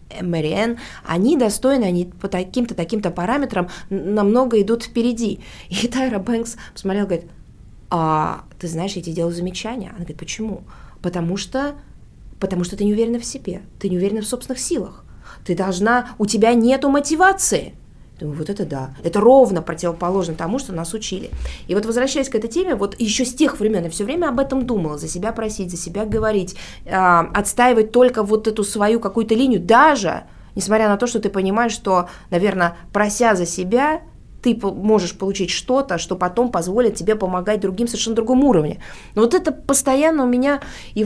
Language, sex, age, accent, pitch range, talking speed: Russian, female, 20-39, native, 180-235 Hz, 175 wpm